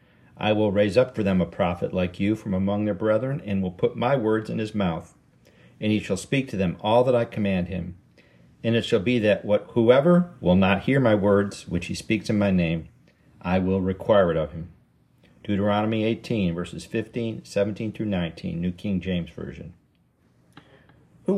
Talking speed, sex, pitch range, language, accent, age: 190 wpm, male, 95-120 Hz, English, American, 50-69